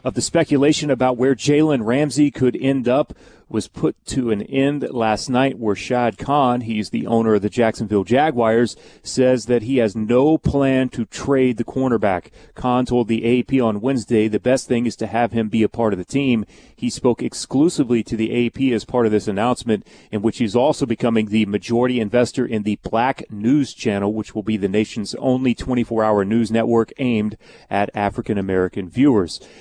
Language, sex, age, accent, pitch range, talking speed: English, male, 30-49, American, 110-130 Hz, 190 wpm